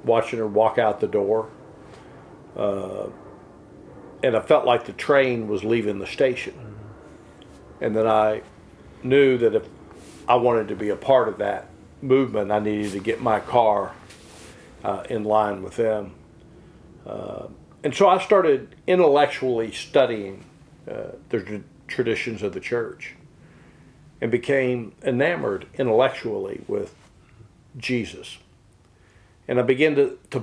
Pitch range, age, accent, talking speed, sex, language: 110-140 Hz, 50-69, American, 130 wpm, male, Finnish